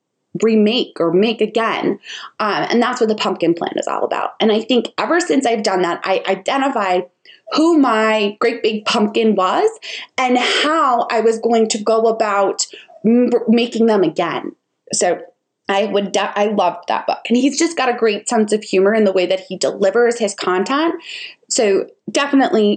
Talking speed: 175 wpm